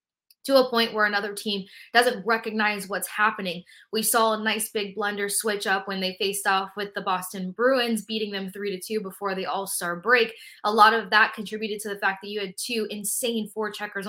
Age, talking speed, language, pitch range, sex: 20-39, 215 wpm, English, 190-220 Hz, female